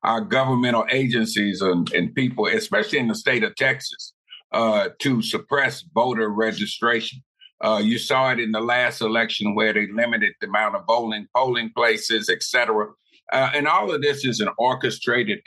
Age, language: 50-69, English